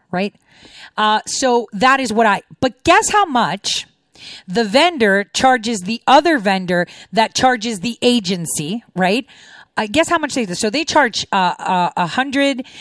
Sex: female